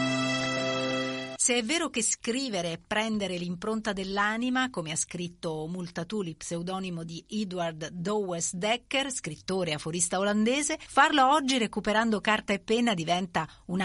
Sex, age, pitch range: female, 40-59, 170-225 Hz